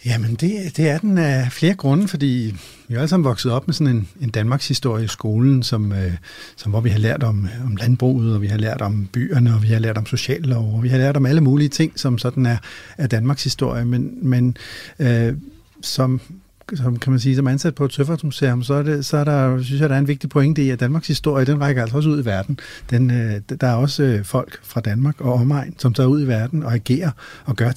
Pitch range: 115-140 Hz